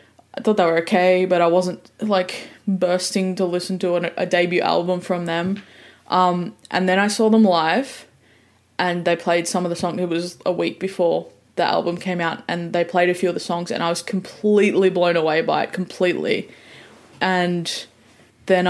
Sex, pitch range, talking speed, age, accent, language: female, 170-190 Hz, 195 wpm, 10-29, Australian, English